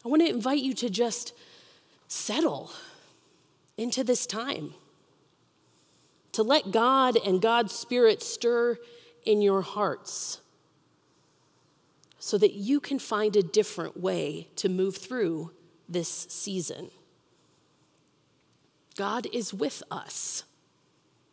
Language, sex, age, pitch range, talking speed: English, female, 30-49, 175-250 Hz, 105 wpm